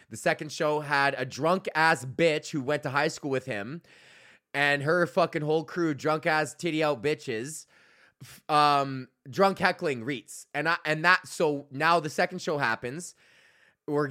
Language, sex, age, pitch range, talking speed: English, male, 20-39, 125-155 Hz, 175 wpm